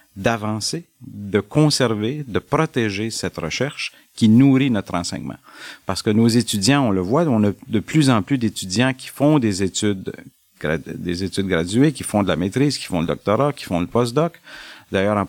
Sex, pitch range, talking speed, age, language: male, 100-130 Hz, 185 wpm, 50-69, French